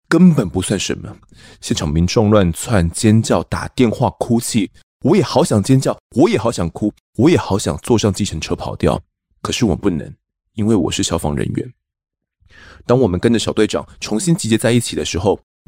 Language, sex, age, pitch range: Chinese, male, 20-39, 85-115 Hz